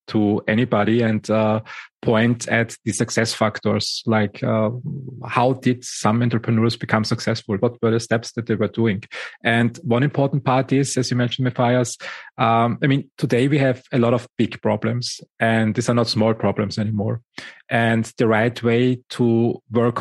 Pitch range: 110-125 Hz